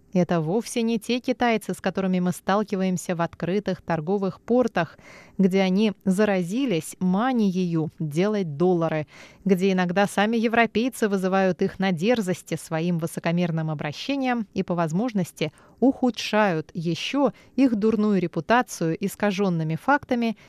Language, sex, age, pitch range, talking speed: Russian, female, 20-39, 170-225 Hz, 115 wpm